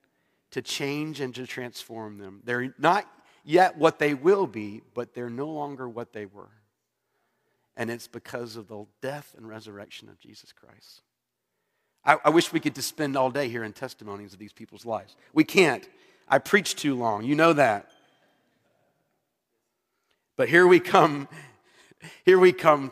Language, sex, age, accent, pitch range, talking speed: English, male, 40-59, American, 115-155 Hz, 165 wpm